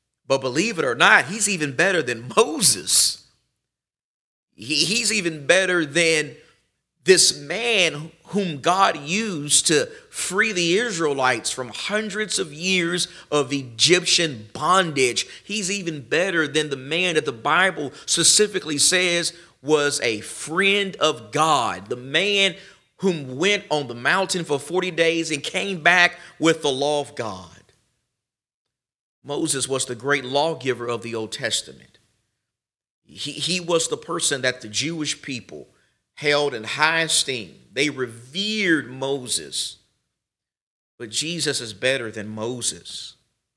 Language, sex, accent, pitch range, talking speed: English, male, American, 135-180 Hz, 130 wpm